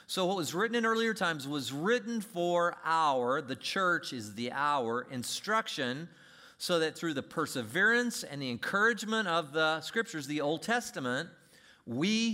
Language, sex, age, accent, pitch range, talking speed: English, male, 40-59, American, 115-170 Hz, 155 wpm